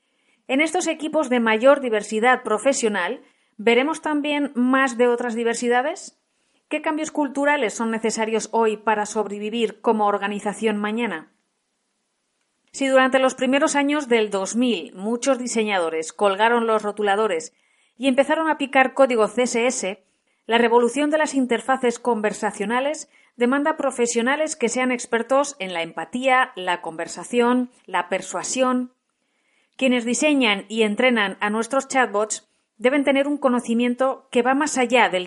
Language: Spanish